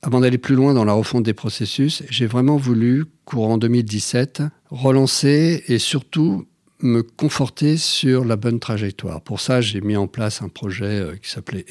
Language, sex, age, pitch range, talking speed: French, male, 50-69, 105-130 Hz, 170 wpm